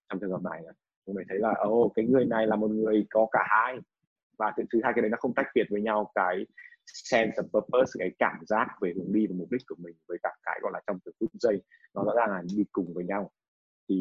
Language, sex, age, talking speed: Vietnamese, male, 20-39, 255 wpm